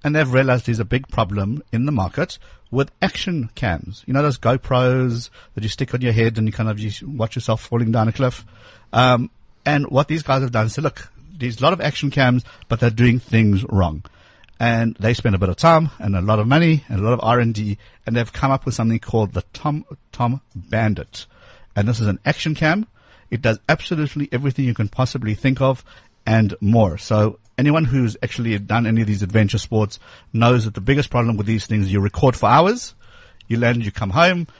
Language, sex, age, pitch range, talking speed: English, male, 60-79, 105-130 Hz, 220 wpm